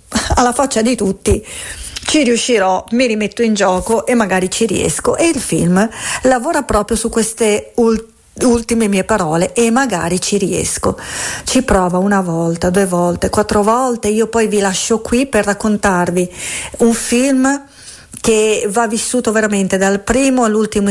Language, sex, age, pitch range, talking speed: Italian, female, 40-59, 195-240 Hz, 150 wpm